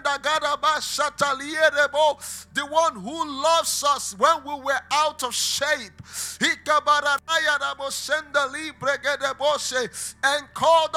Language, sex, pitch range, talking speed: English, male, 275-305 Hz, 70 wpm